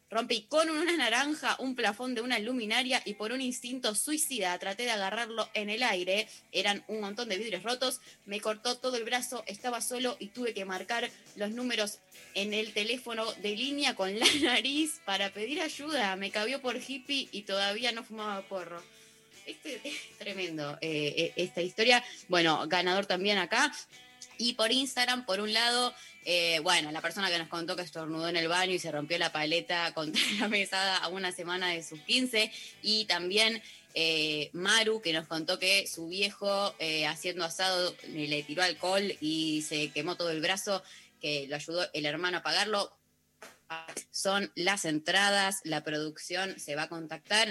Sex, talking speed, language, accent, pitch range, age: female, 175 wpm, Spanish, Argentinian, 170-230 Hz, 20-39